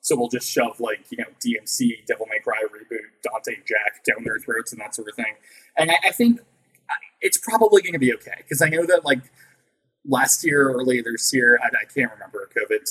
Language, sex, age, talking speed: English, male, 20-39, 225 wpm